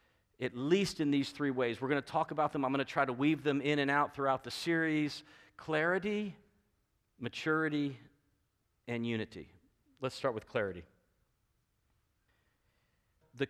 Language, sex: English, male